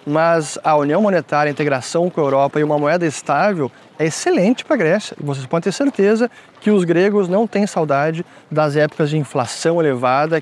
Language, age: Portuguese, 20-39